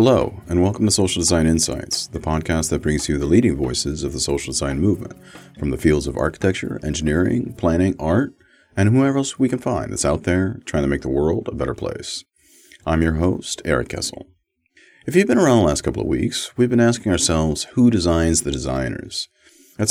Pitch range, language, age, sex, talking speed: 70-110 Hz, English, 40-59, male, 205 wpm